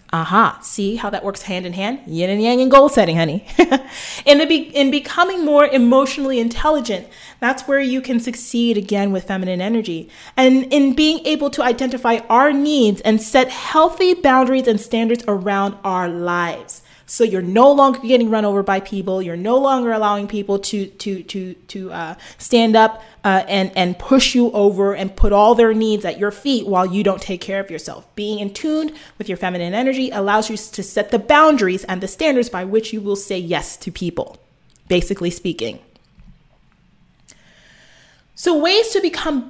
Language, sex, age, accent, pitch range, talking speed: English, female, 30-49, American, 190-260 Hz, 180 wpm